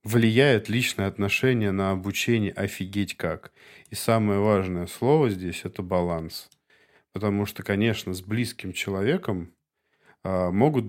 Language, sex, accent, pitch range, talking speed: Russian, male, native, 95-115 Hz, 125 wpm